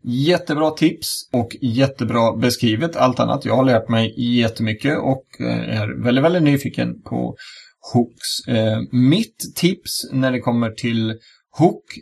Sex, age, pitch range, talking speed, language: male, 30-49, 115-140 Hz, 130 wpm, Swedish